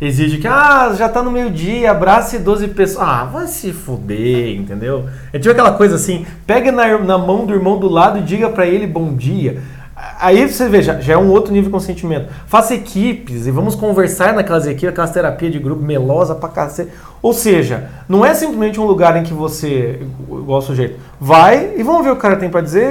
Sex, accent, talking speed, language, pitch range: male, Brazilian, 215 wpm, Portuguese, 140-215 Hz